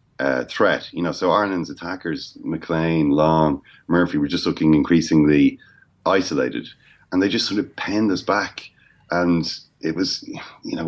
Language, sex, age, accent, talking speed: English, male, 30-49, Irish, 155 wpm